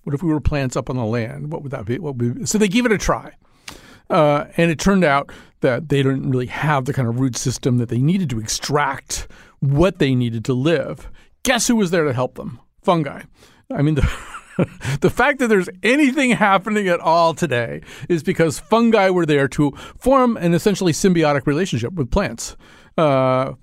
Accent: American